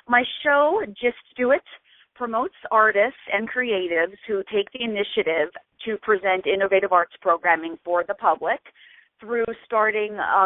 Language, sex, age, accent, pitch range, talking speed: English, female, 40-59, American, 175-225 Hz, 140 wpm